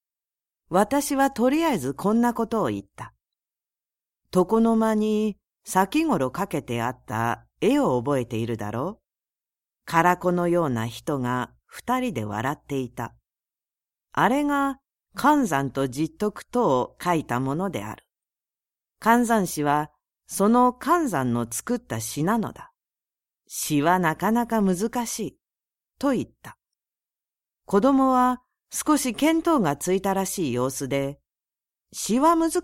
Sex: female